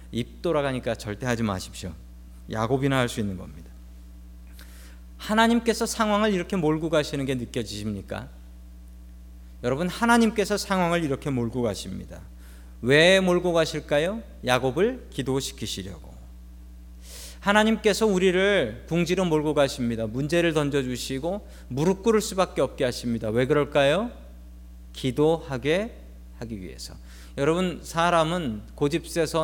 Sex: male